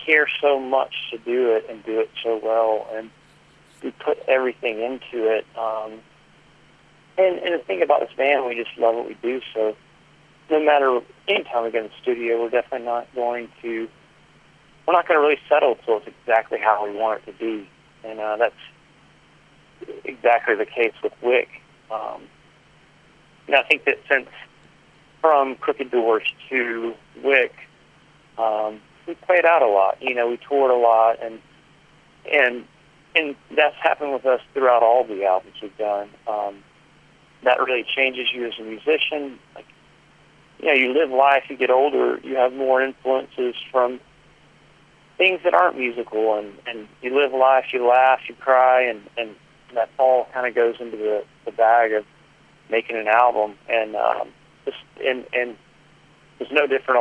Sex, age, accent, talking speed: male, 40-59, American, 170 wpm